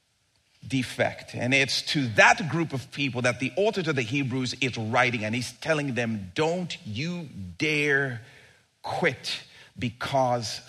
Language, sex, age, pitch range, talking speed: English, male, 40-59, 120-170 Hz, 140 wpm